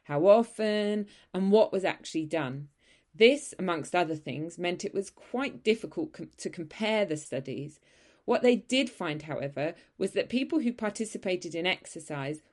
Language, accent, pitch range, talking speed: English, British, 160-210 Hz, 155 wpm